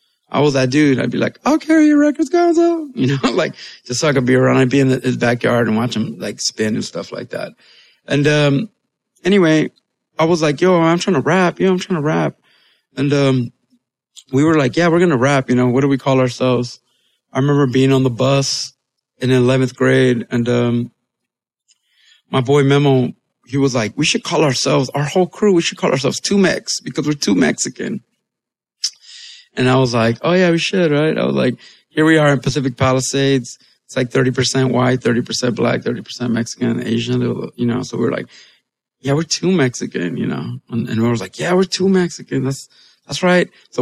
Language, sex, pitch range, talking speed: English, male, 125-155 Hz, 210 wpm